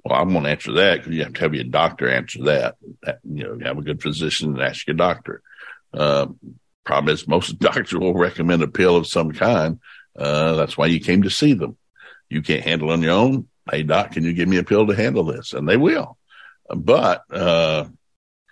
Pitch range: 85-110 Hz